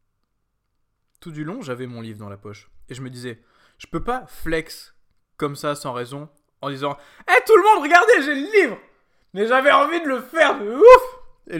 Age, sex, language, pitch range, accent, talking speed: 20-39, male, French, 125-170 Hz, French, 210 wpm